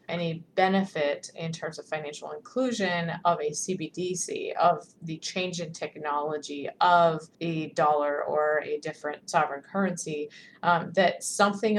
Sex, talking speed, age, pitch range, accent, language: female, 130 wpm, 20-39, 150-175 Hz, American, English